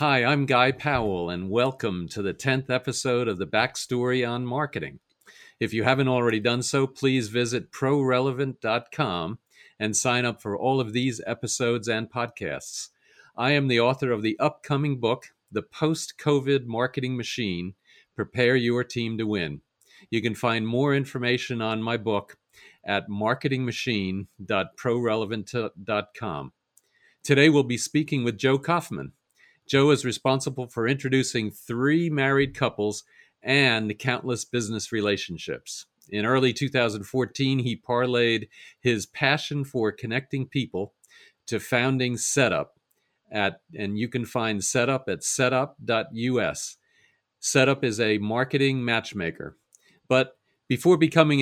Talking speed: 125 wpm